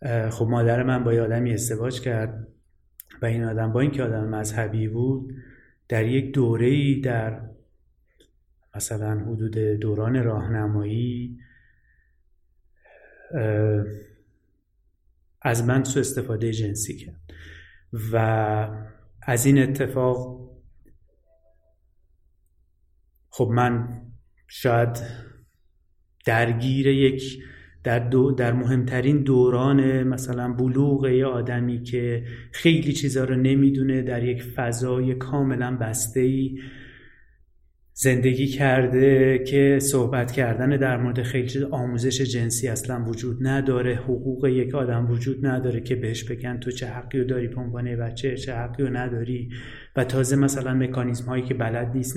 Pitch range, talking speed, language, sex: 110-130 Hz, 110 wpm, Persian, male